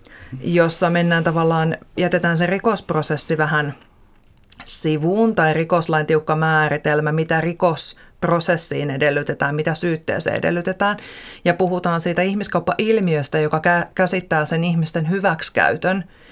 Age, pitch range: 40-59, 155-175 Hz